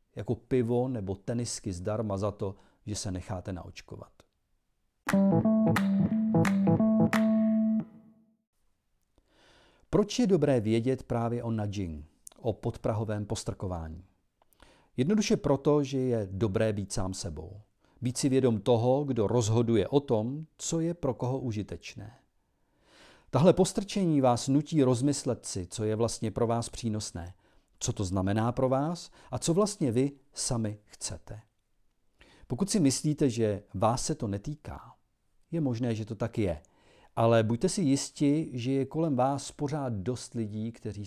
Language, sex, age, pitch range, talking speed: Czech, male, 40-59, 100-145 Hz, 135 wpm